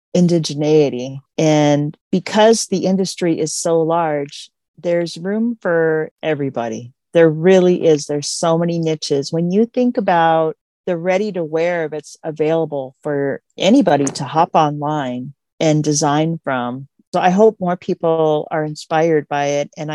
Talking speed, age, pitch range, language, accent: 140 wpm, 40-59, 150-175 Hz, English, American